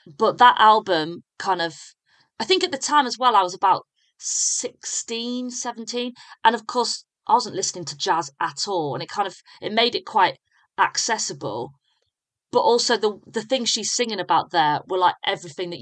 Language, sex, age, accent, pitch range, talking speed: English, female, 30-49, British, 160-225 Hz, 185 wpm